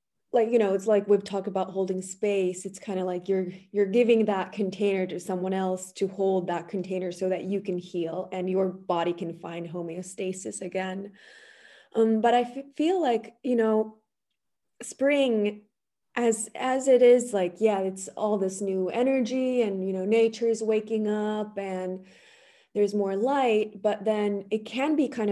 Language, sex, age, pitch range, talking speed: English, female, 20-39, 190-225 Hz, 180 wpm